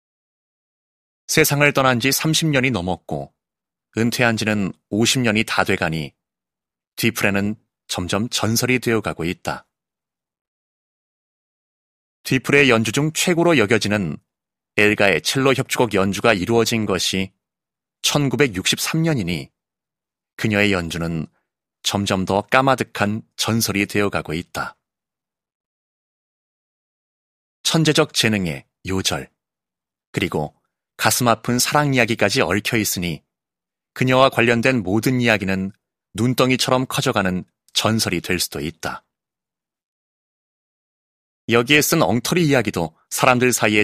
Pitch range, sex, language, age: 100-130 Hz, male, Korean, 30-49